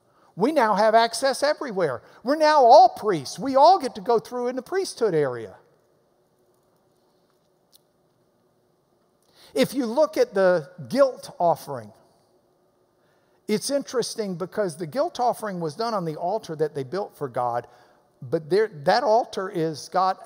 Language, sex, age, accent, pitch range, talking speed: English, male, 60-79, American, 175-280 Hz, 140 wpm